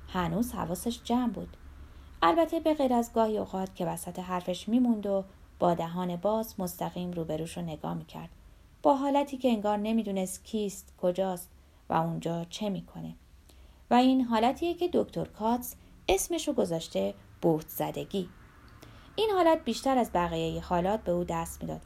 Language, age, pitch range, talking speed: Persian, 30-49, 165-240 Hz, 150 wpm